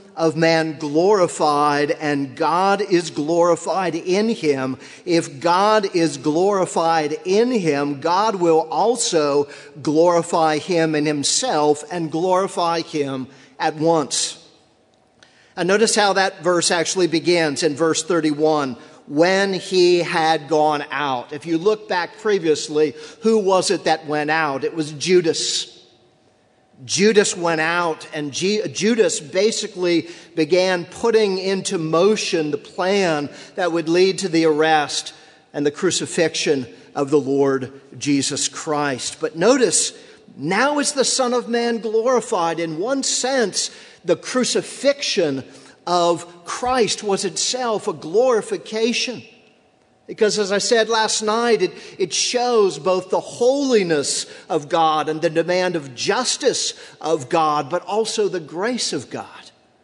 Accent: American